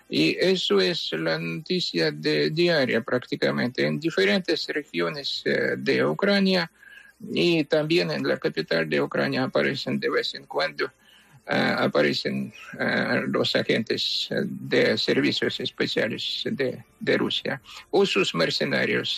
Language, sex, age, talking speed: English, male, 60-79, 120 wpm